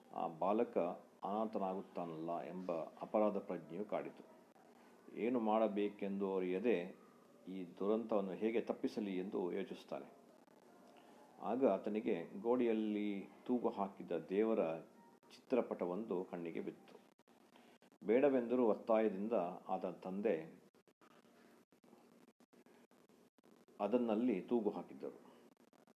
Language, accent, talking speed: English, Indian, 60 wpm